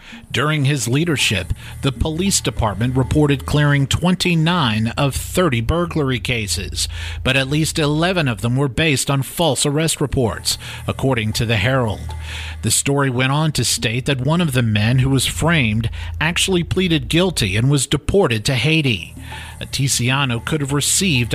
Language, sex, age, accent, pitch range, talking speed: English, male, 50-69, American, 110-150 Hz, 155 wpm